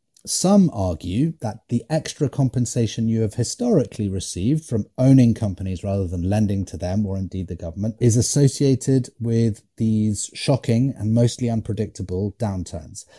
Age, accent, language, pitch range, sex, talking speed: 30-49, British, English, 100-130 Hz, male, 140 wpm